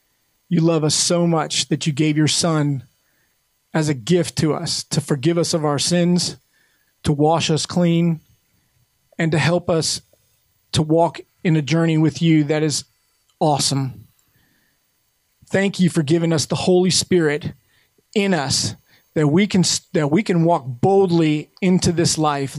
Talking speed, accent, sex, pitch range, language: 160 wpm, American, male, 155-185 Hz, English